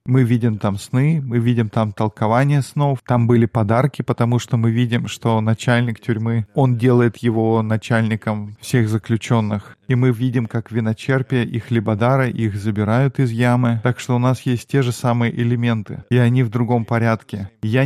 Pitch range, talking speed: 110-125 Hz, 170 wpm